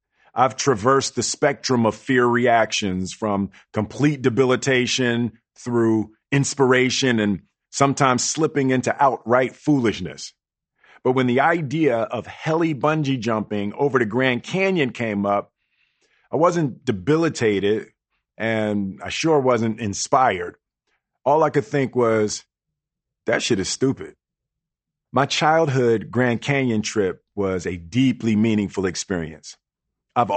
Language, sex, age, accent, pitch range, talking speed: Marathi, male, 40-59, American, 105-140 Hz, 115 wpm